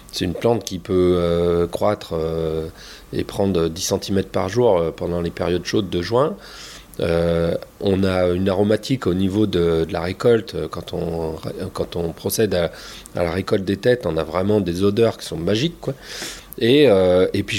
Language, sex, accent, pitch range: French, male, French, 90-110 Hz